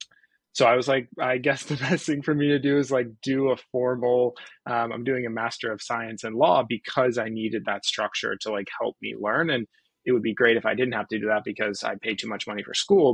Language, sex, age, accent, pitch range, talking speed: English, male, 20-39, American, 105-130 Hz, 260 wpm